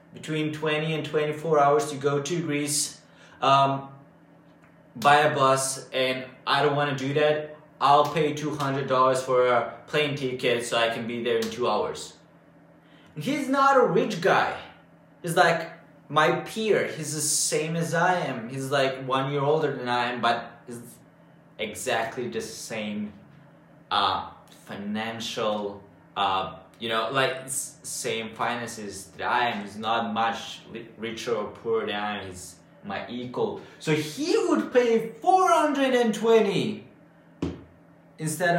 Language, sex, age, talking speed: English, male, 20-39, 145 wpm